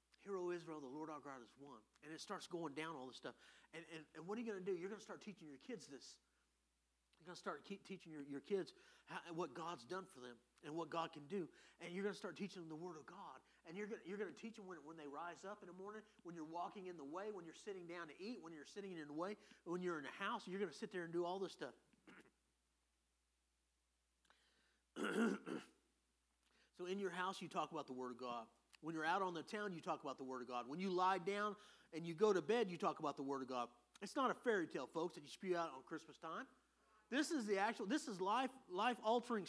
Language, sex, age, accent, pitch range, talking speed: English, male, 30-49, American, 140-200 Hz, 265 wpm